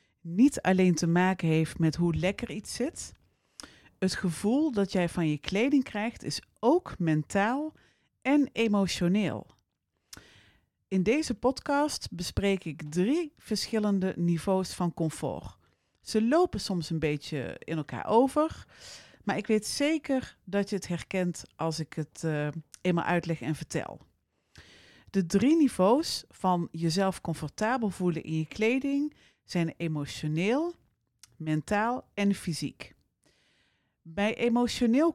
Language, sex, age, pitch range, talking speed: Dutch, female, 40-59, 155-205 Hz, 125 wpm